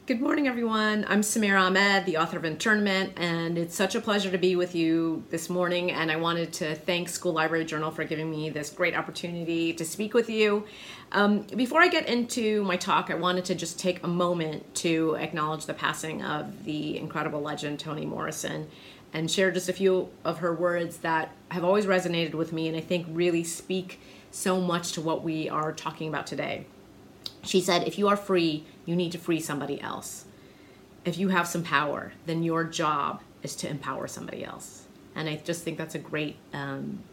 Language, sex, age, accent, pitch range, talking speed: English, female, 30-49, American, 160-190 Hz, 200 wpm